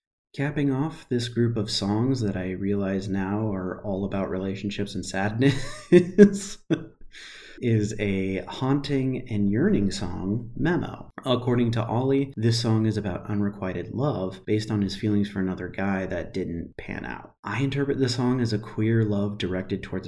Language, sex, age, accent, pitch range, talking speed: English, male, 30-49, American, 95-120 Hz, 160 wpm